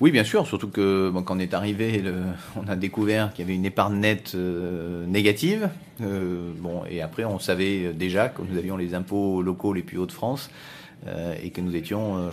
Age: 30-49